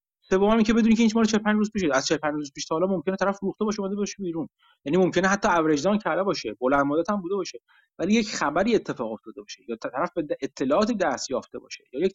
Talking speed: 230 wpm